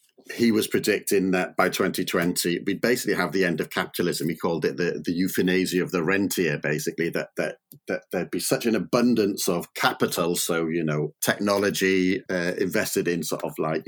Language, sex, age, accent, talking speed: English, male, 40-59, British, 190 wpm